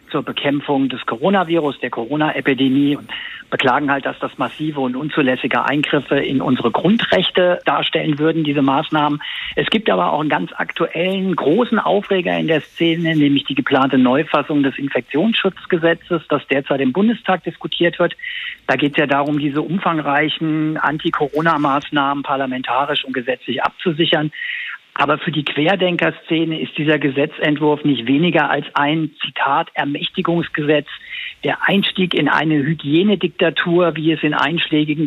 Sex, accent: male, German